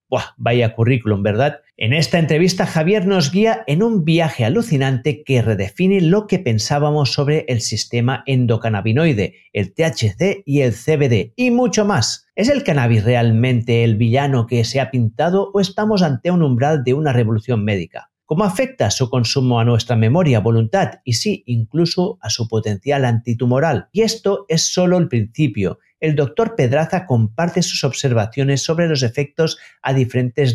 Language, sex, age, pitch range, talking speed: Spanish, male, 50-69, 115-155 Hz, 160 wpm